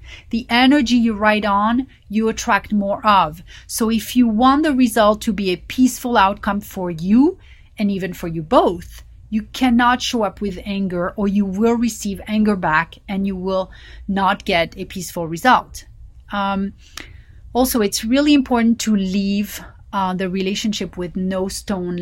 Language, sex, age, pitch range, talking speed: English, female, 30-49, 185-230 Hz, 165 wpm